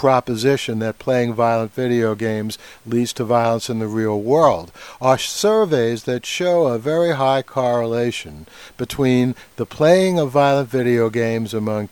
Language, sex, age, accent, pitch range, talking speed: English, male, 60-79, American, 120-145 Hz, 145 wpm